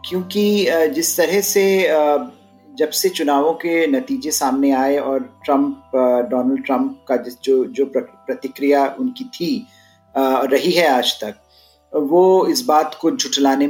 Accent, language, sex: native, Hindi, male